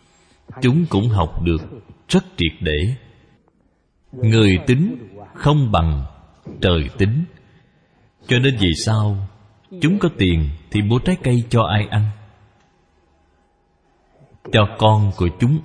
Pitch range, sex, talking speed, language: 90-125 Hz, male, 120 wpm, Vietnamese